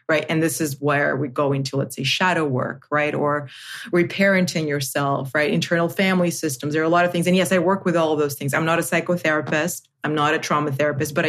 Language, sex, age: English, female, 30-49